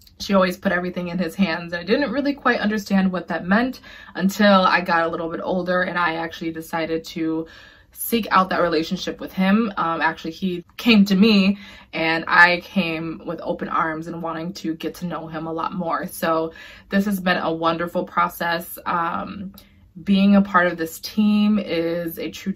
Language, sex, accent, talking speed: English, female, American, 190 wpm